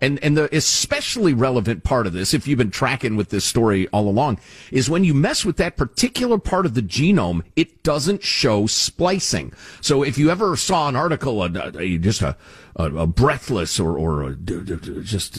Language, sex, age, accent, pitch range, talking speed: English, male, 50-69, American, 105-165 Hz, 180 wpm